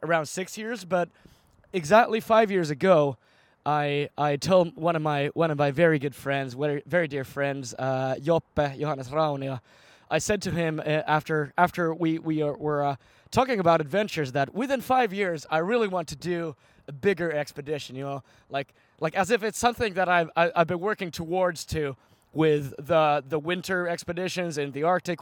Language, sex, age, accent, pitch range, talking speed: English, male, 20-39, American, 140-175 Hz, 185 wpm